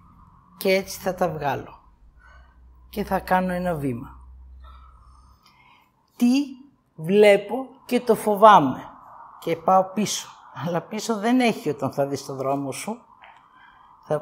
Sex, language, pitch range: female, Greek, 155-220 Hz